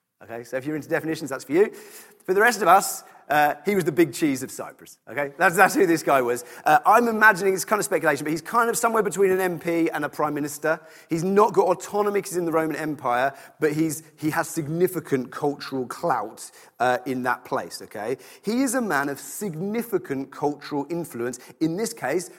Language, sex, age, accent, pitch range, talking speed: English, male, 30-49, British, 155-235 Hz, 215 wpm